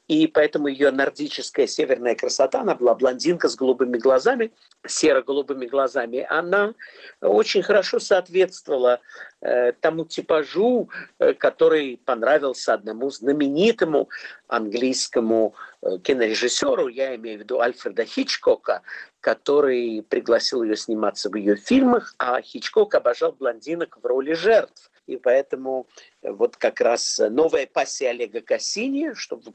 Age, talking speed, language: 50-69, 120 wpm, Russian